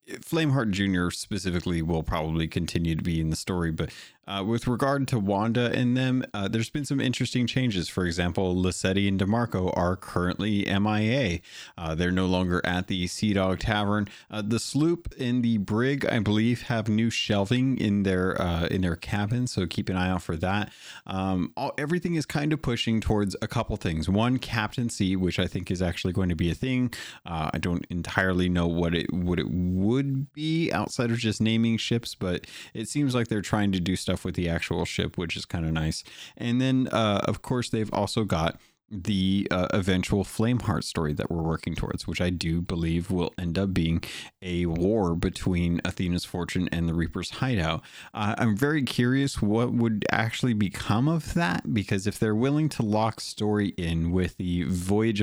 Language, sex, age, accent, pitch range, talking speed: English, male, 30-49, American, 90-115 Hz, 195 wpm